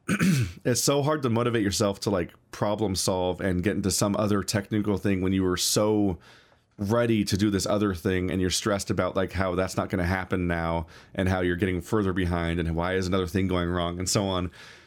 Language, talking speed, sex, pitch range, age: English, 220 wpm, male, 90-110 Hz, 30-49